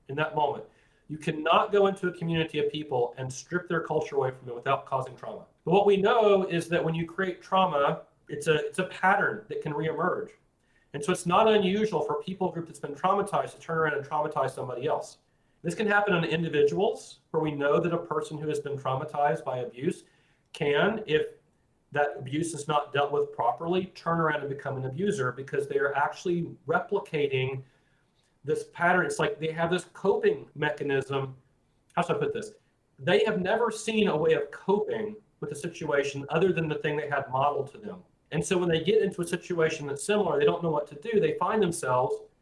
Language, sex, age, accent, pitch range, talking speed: English, male, 40-59, American, 145-195 Hz, 210 wpm